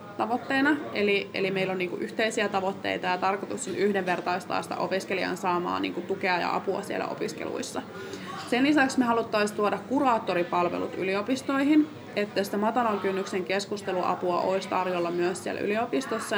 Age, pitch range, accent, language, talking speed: 20-39, 185-210 Hz, native, Finnish, 140 wpm